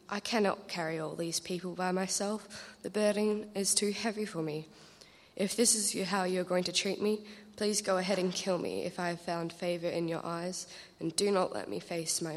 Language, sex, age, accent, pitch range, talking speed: English, female, 20-39, Australian, 170-200 Hz, 225 wpm